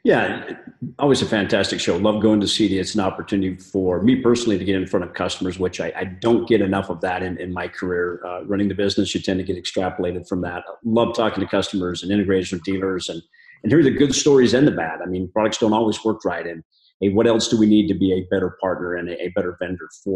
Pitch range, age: 95-110 Hz, 40-59